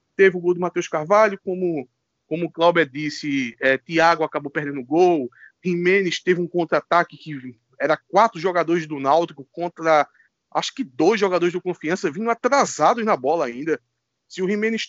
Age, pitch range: 20-39, 155-195 Hz